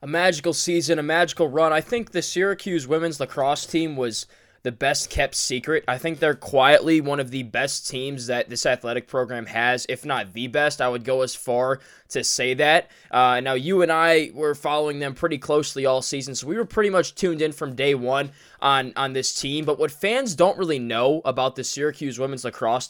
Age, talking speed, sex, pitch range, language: 20-39, 210 wpm, male, 130-160 Hz, English